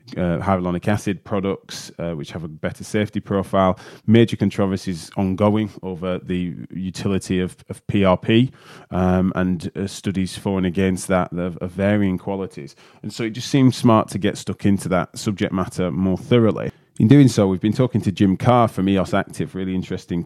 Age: 20-39